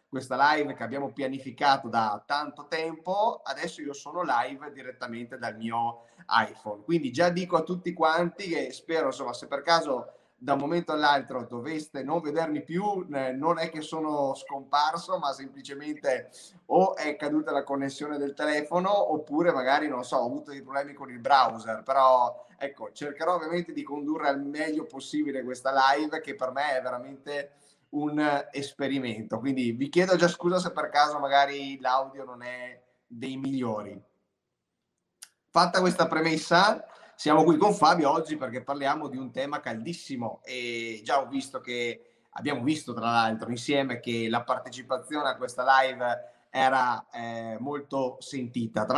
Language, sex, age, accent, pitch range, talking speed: Italian, male, 30-49, native, 125-155 Hz, 155 wpm